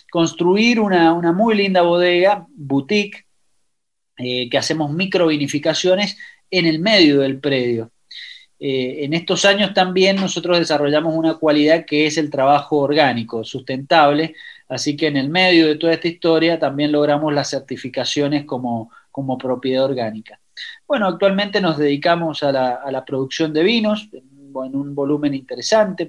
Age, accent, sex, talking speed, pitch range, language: 30-49, Argentinian, male, 145 wpm, 140-180 Hz, Spanish